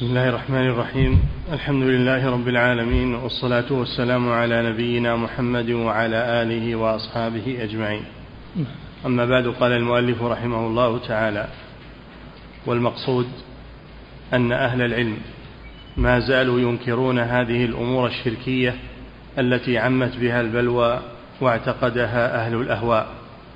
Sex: male